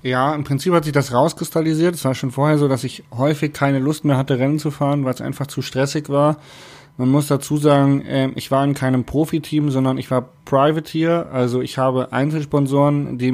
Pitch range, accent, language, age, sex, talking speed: 130-150 Hz, German, English, 30-49, male, 210 wpm